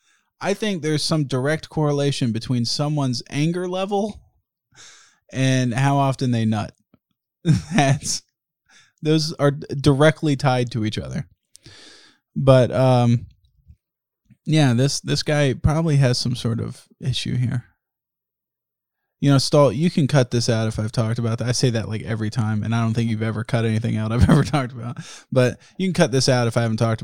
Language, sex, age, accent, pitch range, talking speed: English, male, 20-39, American, 110-140 Hz, 175 wpm